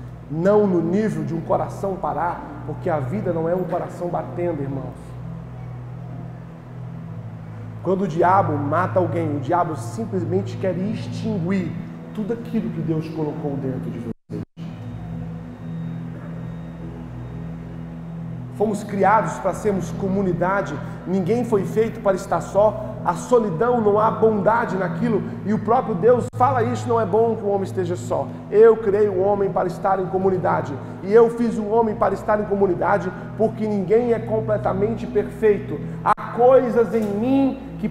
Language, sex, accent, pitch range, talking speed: Gujarati, male, Brazilian, 165-230 Hz, 150 wpm